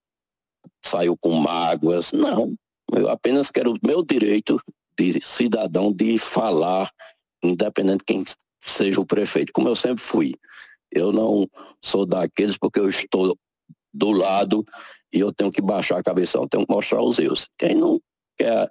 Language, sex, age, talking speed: Portuguese, male, 60-79, 155 wpm